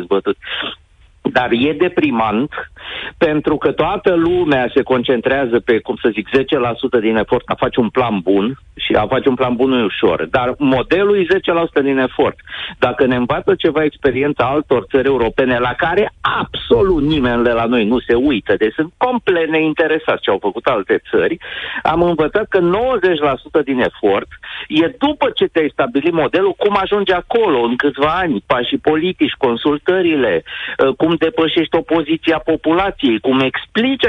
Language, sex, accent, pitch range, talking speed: Romanian, male, native, 140-235 Hz, 155 wpm